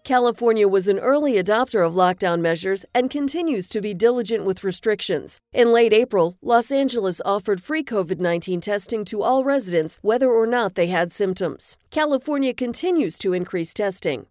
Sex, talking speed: female, 160 wpm